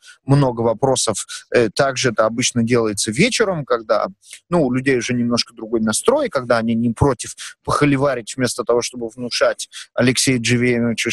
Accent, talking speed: native, 140 wpm